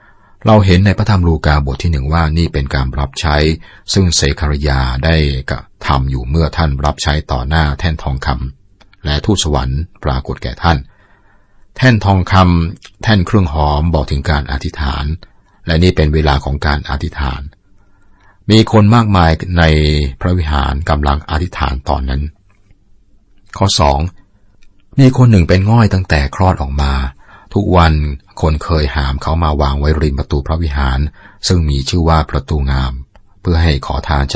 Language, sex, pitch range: Thai, male, 70-100 Hz